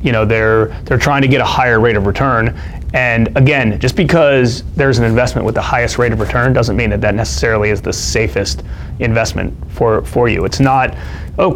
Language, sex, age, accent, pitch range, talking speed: English, male, 30-49, American, 110-130 Hz, 210 wpm